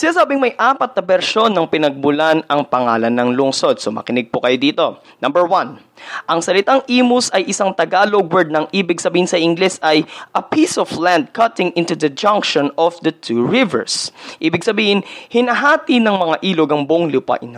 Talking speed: 180 wpm